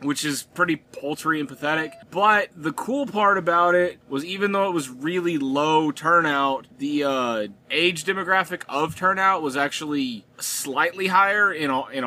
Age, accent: 20-39, American